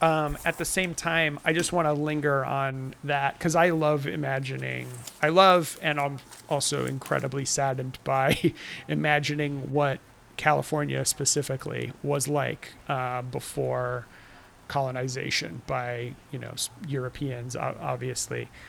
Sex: male